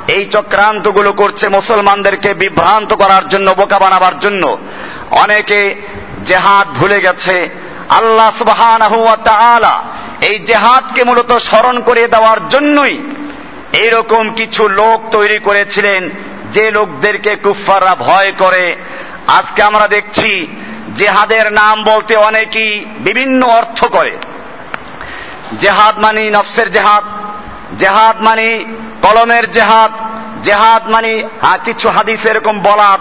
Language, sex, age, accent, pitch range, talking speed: Bengali, male, 50-69, native, 205-225 Hz, 50 wpm